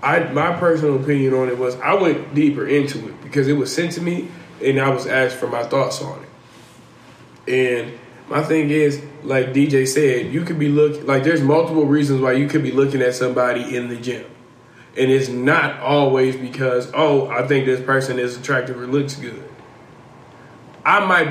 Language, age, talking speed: English, 20-39, 195 wpm